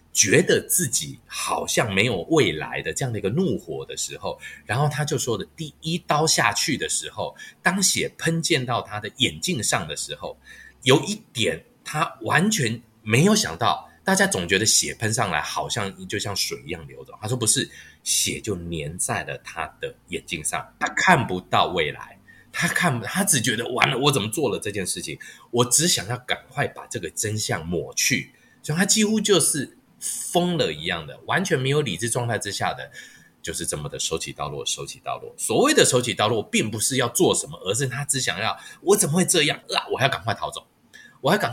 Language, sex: Chinese, male